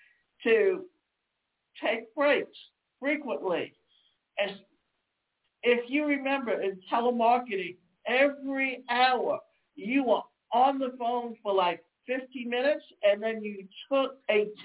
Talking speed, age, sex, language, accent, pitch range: 105 wpm, 60-79, male, English, American, 200-260 Hz